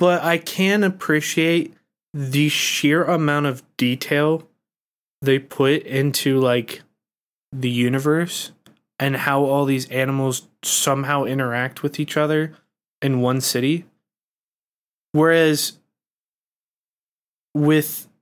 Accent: American